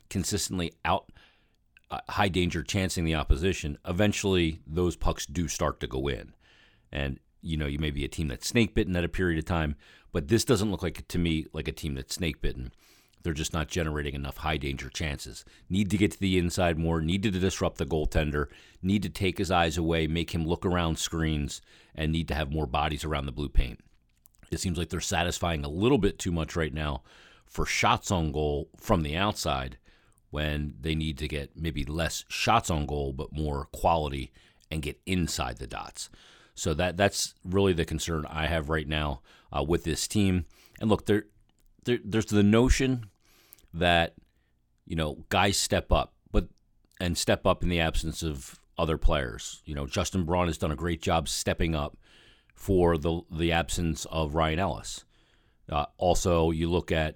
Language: English